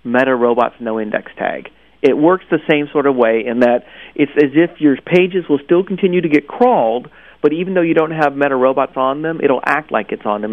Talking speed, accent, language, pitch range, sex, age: 235 wpm, American, English, 120-150 Hz, male, 40-59